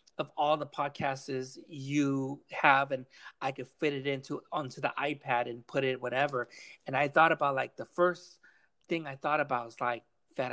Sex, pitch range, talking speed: male, 130-145 Hz, 190 wpm